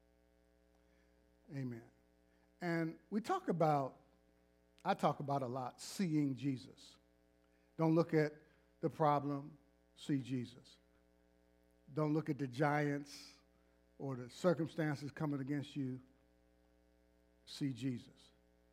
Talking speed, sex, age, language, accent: 105 wpm, male, 50-69, English, American